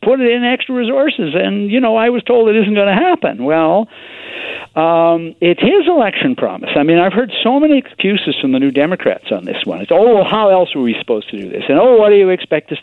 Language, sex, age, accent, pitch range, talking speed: English, male, 60-79, American, 130-205 Hz, 250 wpm